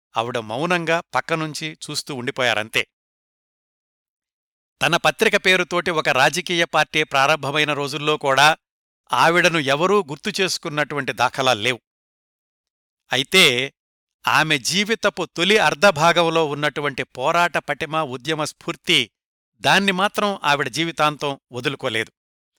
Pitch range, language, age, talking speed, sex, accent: 135-170 Hz, Telugu, 60-79, 90 wpm, male, native